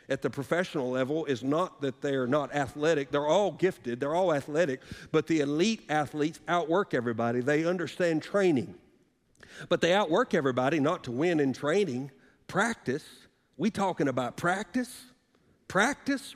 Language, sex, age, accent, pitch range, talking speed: English, male, 50-69, American, 165-250 Hz, 150 wpm